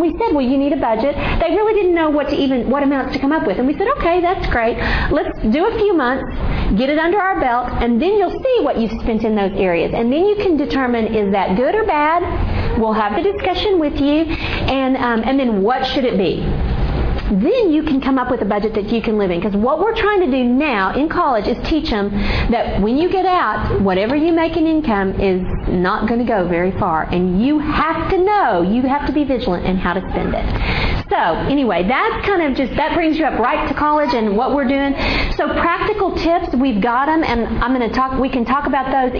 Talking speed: 245 wpm